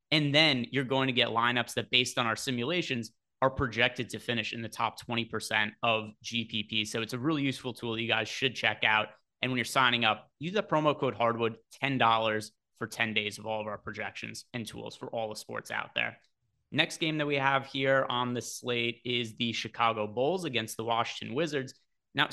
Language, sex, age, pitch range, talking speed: English, male, 30-49, 115-135 Hz, 210 wpm